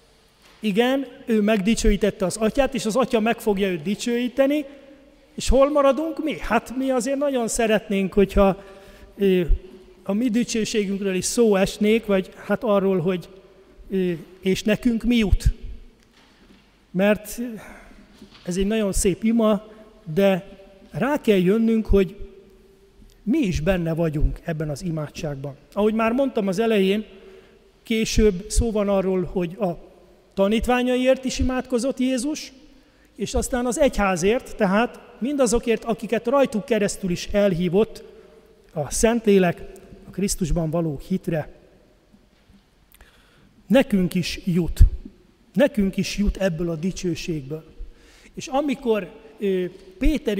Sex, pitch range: male, 190-230 Hz